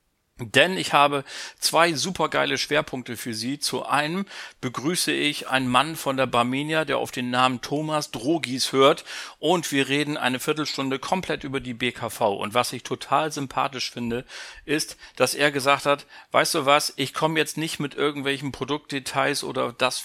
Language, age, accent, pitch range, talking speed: German, 40-59, German, 130-155 Hz, 170 wpm